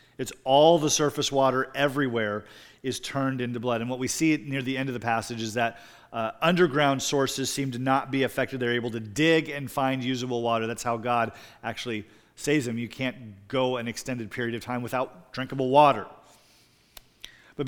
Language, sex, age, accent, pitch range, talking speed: English, male, 40-59, American, 125-145 Hz, 190 wpm